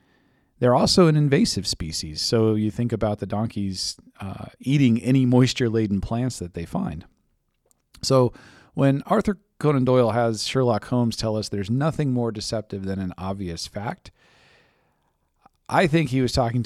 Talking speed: 150 wpm